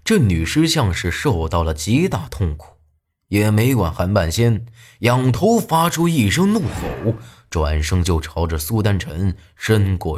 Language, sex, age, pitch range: Chinese, male, 20-39, 85-135 Hz